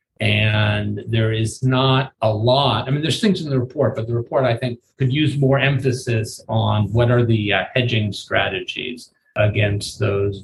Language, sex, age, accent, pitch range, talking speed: English, male, 40-59, American, 100-120 Hz, 180 wpm